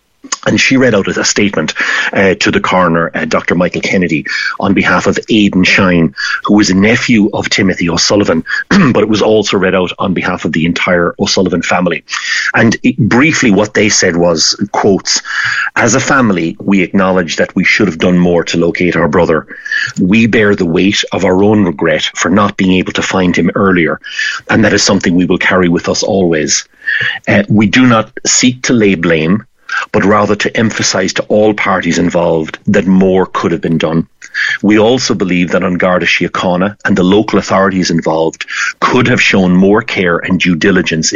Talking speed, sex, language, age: 190 wpm, male, English, 40-59